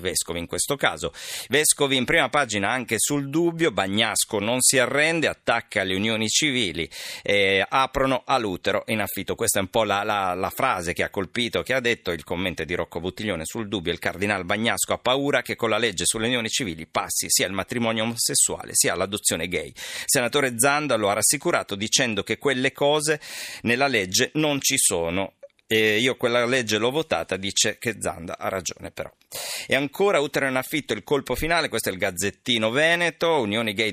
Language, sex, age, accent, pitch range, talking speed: Italian, male, 40-59, native, 95-135 Hz, 190 wpm